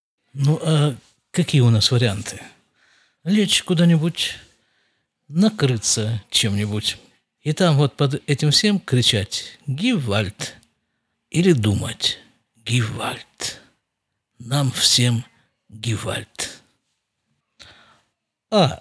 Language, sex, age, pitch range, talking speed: Russian, male, 50-69, 115-155 Hz, 80 wpm